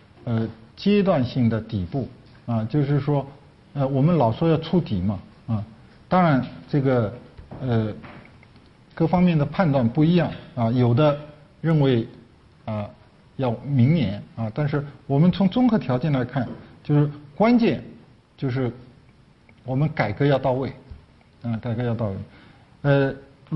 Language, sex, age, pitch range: Chinese, male, 50-69, 105-155 Hz